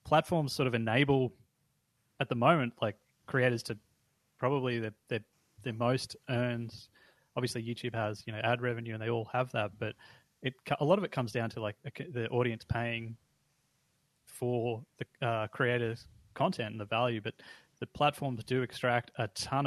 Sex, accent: male, Australian